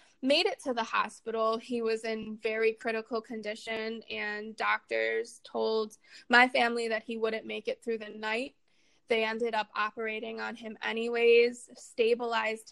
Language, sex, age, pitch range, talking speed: English, female, 20-39, 215-240 Hz, 150 wpm